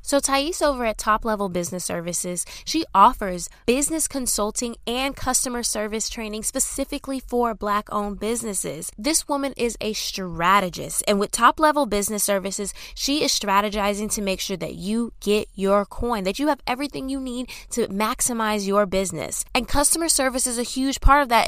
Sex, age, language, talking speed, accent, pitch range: female, 10-29, English, 170 wpm, American, 205-265 Hz